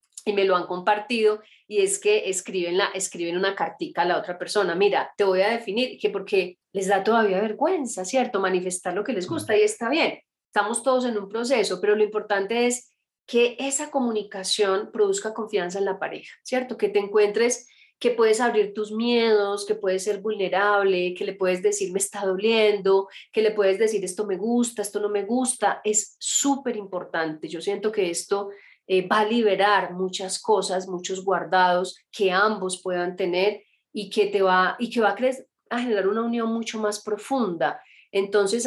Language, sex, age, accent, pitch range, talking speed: Spanish, female, 30-49, Colombian, 185-220 Hz, 190 wpm